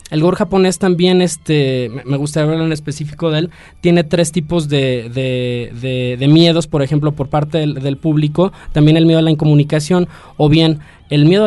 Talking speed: 195 wpm